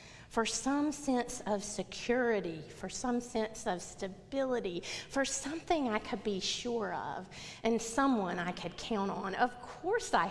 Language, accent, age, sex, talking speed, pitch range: English, American, 30-49, female, 150 wpm, 175-240 Hz